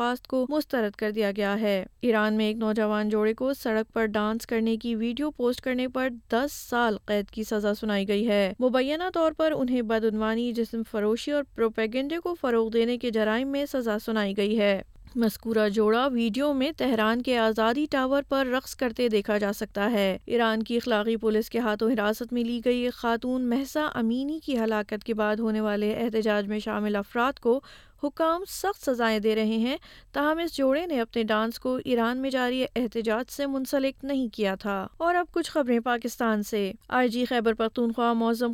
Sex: female